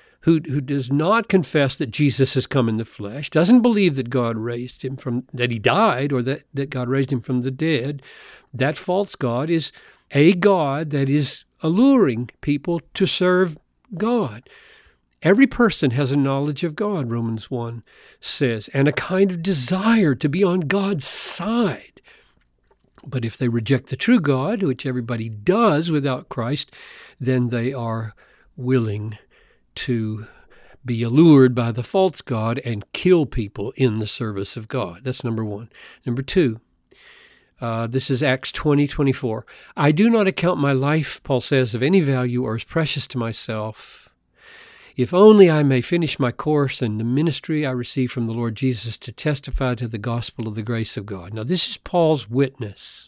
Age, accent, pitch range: 50-69, American, 120-160 Hz